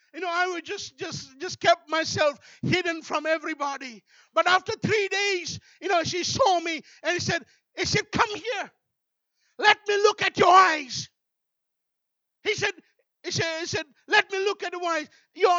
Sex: male